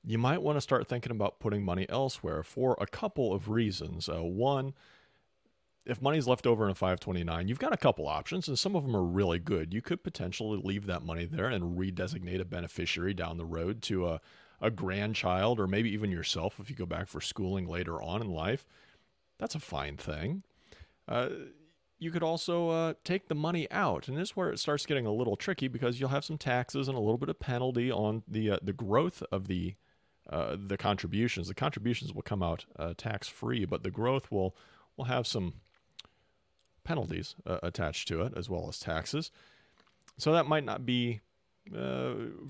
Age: 40-59